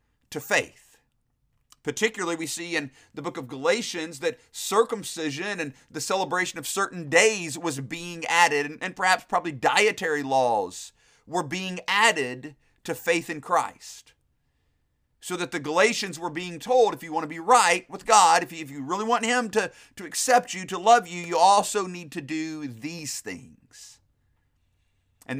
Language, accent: English, American